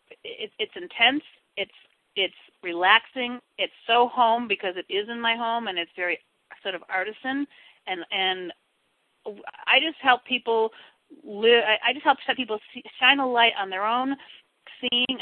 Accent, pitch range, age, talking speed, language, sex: American, 180-230 Hz, 40-59, 150 wpm, English, female